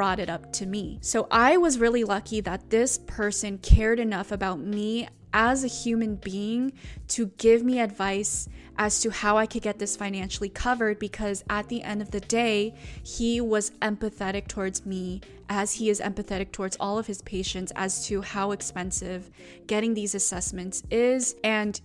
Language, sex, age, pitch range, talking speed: English, female, 20-39, 195-230 Hz, 175 wpm